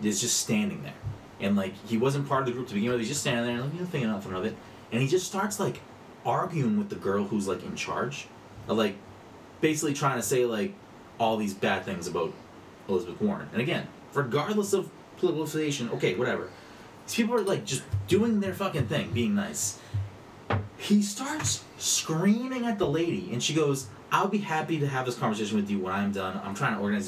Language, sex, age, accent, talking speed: English, male, 30-49, American, 215 wpm